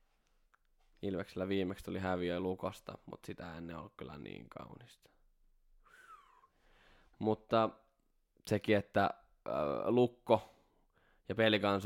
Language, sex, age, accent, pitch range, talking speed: Finnish, male, 10-29, native, 90-105 Hz, 100 wpm